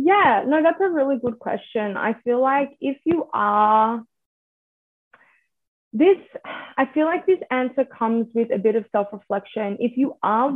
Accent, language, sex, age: Australian, English, female, 20-39